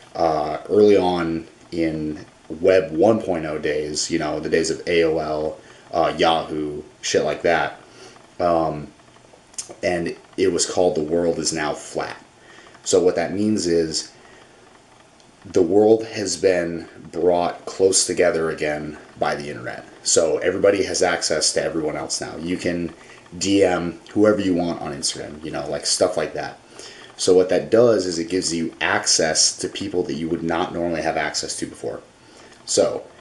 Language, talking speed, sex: English, 155 wpm, male